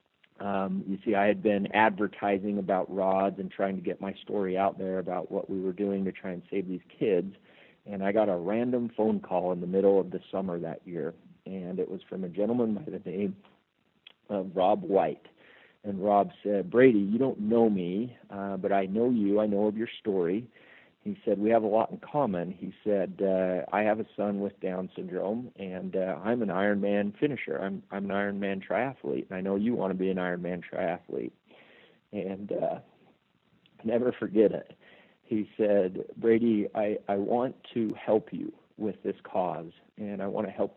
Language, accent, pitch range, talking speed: English, American, 95-105 Hz, 195 wpm